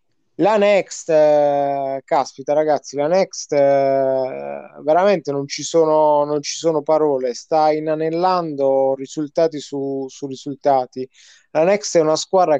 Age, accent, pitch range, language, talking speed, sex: 20-39, native, 140-165 Hz, Italian, 130 wpm, male